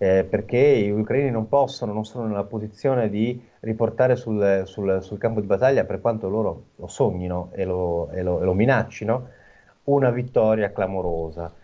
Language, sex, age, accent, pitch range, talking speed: Italian, male, 30-49, native, 90-110 Hz, 155 wpm